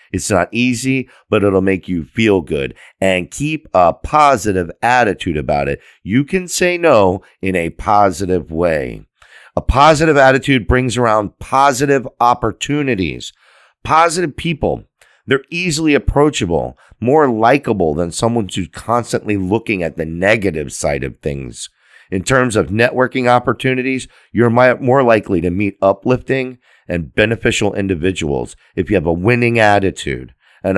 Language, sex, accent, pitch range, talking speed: English, male, American, 95-130 Hz, 140 wpm